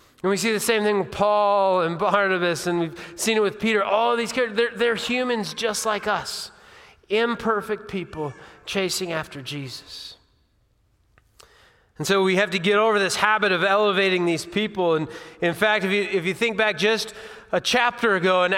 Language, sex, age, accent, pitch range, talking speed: English, male, 30-49, American, 185-225 Hz, 185 wpm